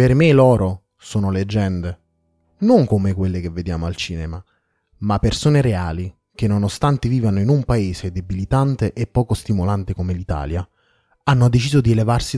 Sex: male